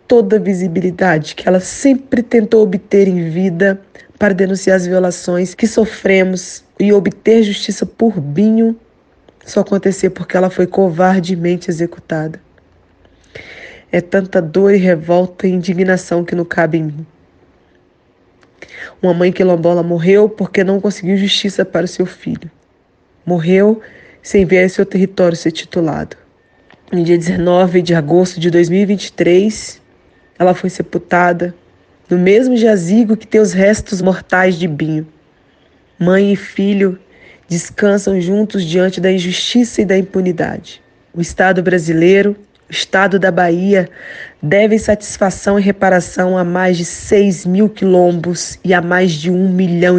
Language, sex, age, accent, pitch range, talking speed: Portuguese, female, 20-39, Brazilian, 175-195 Hz, 135 wpm